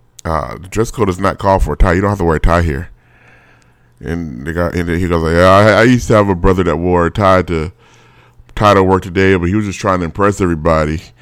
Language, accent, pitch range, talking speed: English, American, 85-110 Hz, 265 wpm